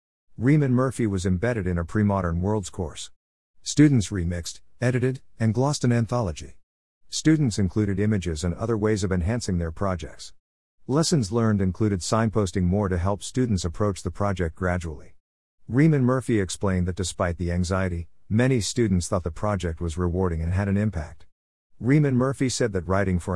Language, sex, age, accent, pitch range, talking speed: English, male, 50-69, American, 90-120 Hz, 160 wpm